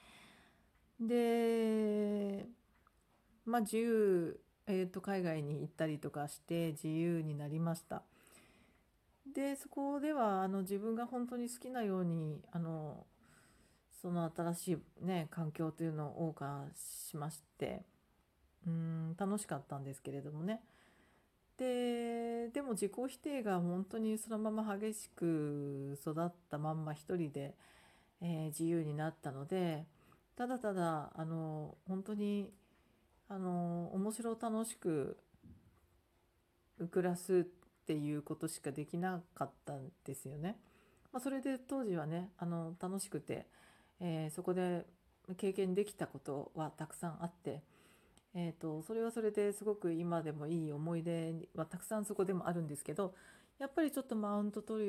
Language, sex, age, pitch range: Japanese, female, 40-59, 155-210 Hz